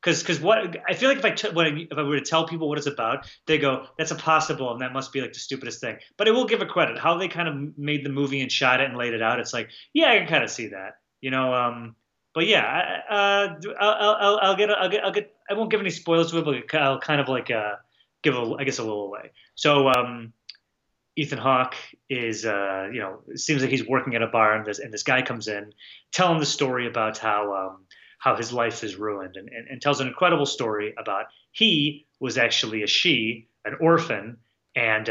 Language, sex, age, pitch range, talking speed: English, male, 30-49, 110-150 Hz, 250 wpm